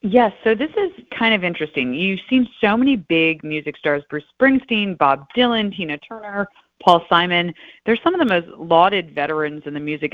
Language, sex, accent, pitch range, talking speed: English, female, American, 150-205 Hz, 190 wpm